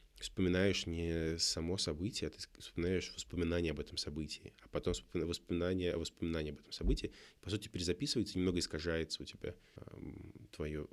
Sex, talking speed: male, 145 wpm